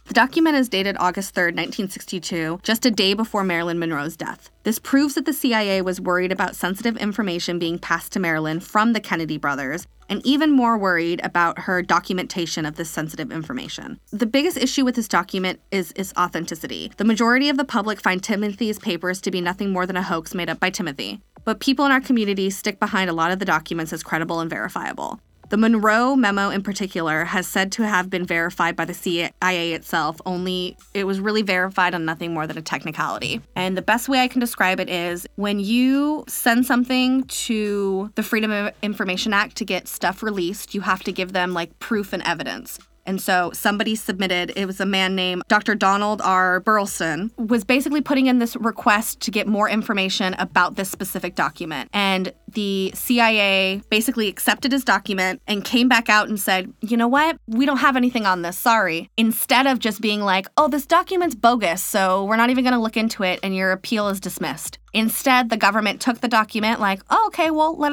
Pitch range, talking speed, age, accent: 180-230 Hz, 200 wpm, 20-39, American